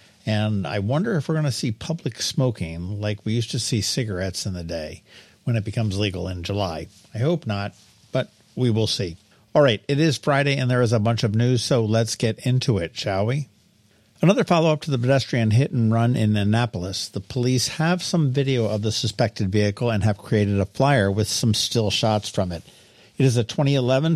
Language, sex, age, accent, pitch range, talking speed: English, male, 50-69, American, 100-130 Hz, 210 wpm